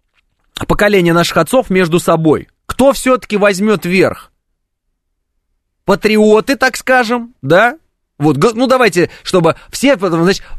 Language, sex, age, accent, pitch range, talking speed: Russian, male, 20-39, native, 135-210 Hz, 110 wpm